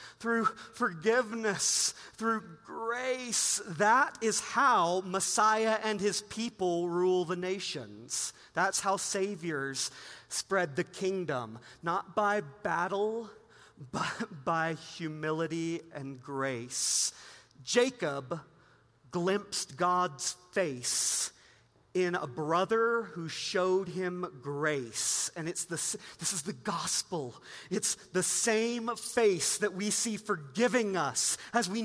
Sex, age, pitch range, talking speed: male, 40-59, 180-265 Hz, 105 wpm